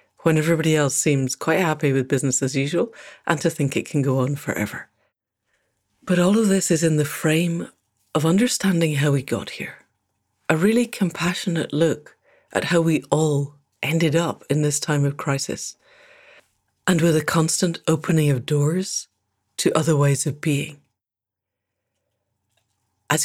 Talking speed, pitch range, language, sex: 155 wpm, 140-180 Hz, English, female